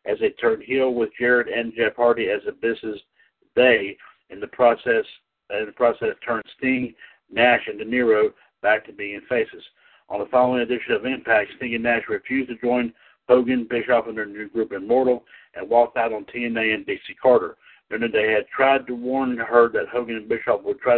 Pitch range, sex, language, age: 120-135 Hz, male, English, 60-79